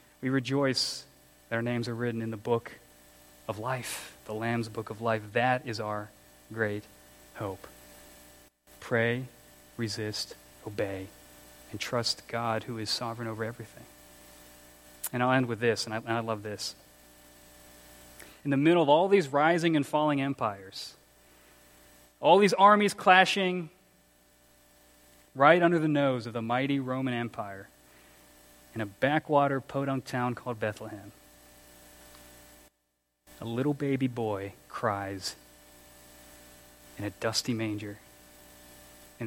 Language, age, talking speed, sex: English, 30-49, 125 wpm, male